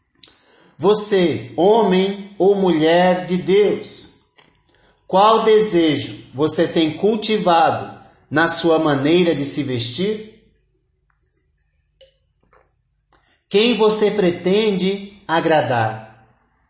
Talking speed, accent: 75 wpm, Brazilian